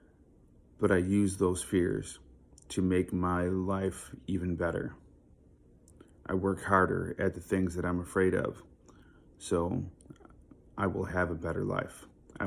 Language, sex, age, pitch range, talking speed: English, male, 30-49, 85-95 Hz, 140 wpm